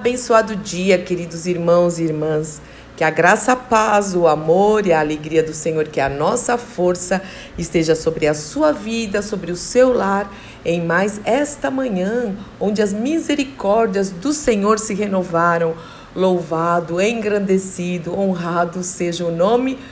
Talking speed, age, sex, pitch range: 145 wpm, 50-69, female, 170-215 Hz